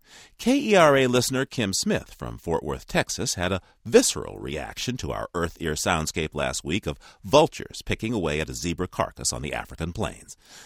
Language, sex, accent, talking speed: English, male, American, 175 wpm